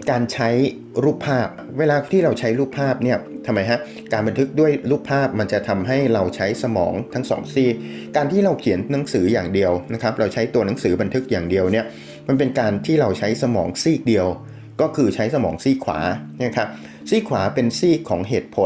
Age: 30-49